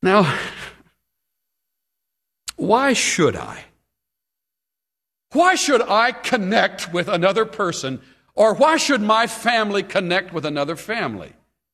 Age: 60-79